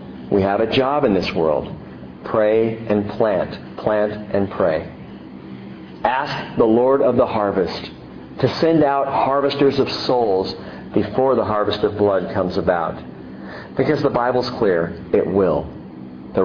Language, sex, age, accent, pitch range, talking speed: English, male, 40-59, American, 65-105 Hz, 140 wpm